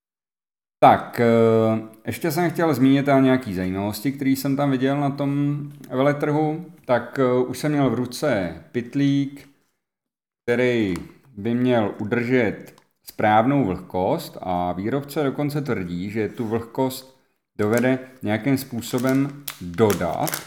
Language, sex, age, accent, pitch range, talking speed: Czech, male, 40-59, native, 105-140 Hz, 115 wpm